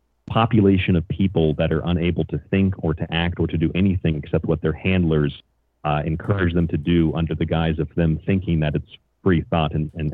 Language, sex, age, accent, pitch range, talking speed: English, male, 40-59, American, 75-85 Hz, 215 wpm